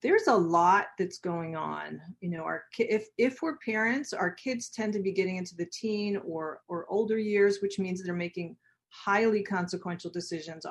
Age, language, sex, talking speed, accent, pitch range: 40-59, English, female, 185 wpm, American, 170-205 Hz